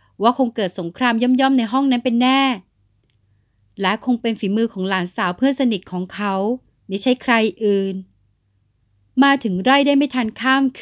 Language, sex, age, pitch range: Thai, female, 60-79, 185-255 Hz